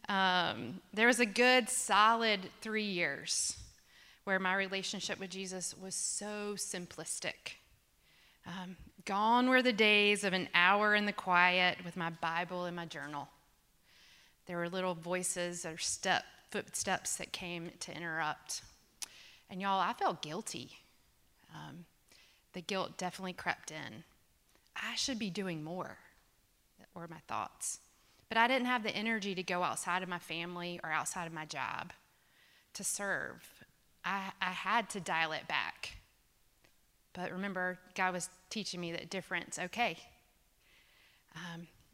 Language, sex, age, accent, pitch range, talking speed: English, female, 30-49, American, 175-205 Hz, 140 wpm